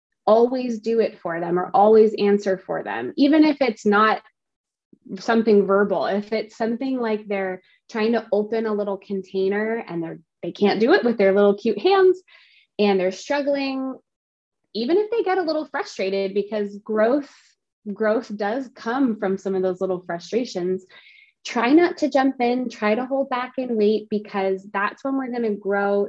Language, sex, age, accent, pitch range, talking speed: English, female, 20-39, American, 190-230 Hz, 175 wpm